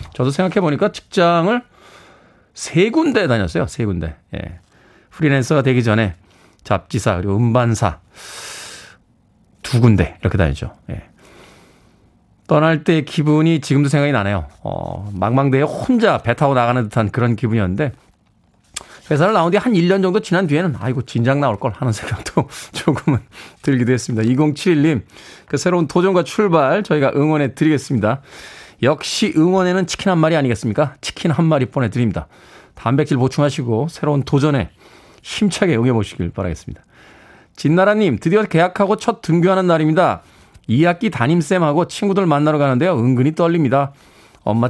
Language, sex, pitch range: Korean, male, 115-170 Hz